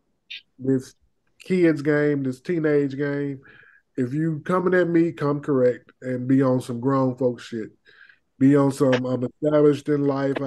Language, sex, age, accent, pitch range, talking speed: English, male, 20-39, American, 125-150 Hz, 155 wpm